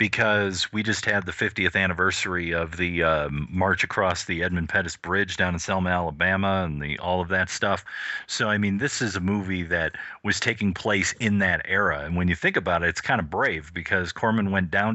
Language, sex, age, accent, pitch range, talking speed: English, male, 40-59, American, 90-110 Hz, 215 wpm